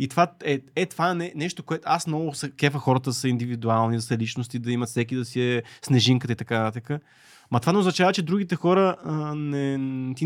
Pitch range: 120-160 Hz